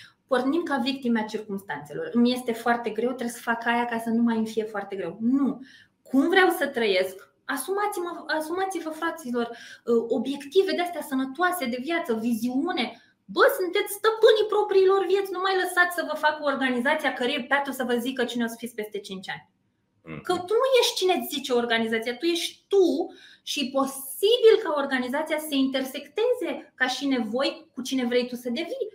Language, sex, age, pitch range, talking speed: Romanian, female, 20-39, 225-330 Hz, 175 wpm